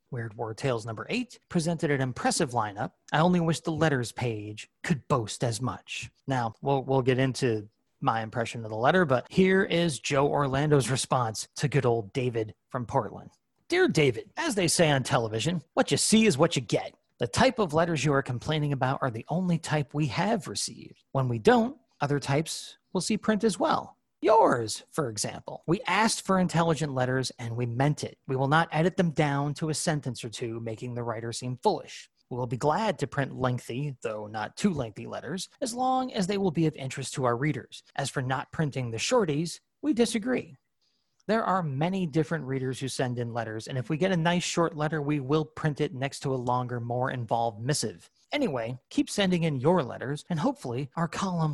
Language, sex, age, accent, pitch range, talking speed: English, male, 30-49, American, 125-170 Hz, 205 wpm